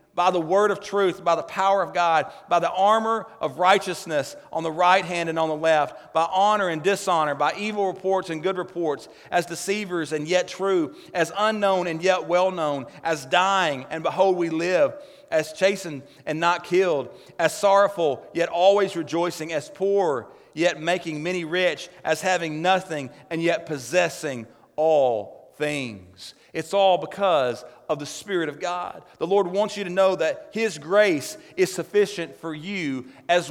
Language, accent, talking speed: English, American, 170 wpm